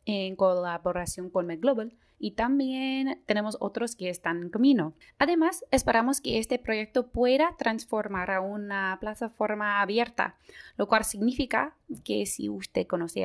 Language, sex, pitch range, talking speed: English, female, 195-250 Hz, 135 wpm